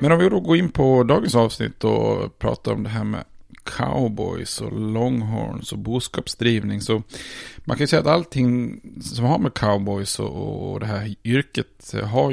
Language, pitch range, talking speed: Swedish, 100-125 Hz, 175 wpm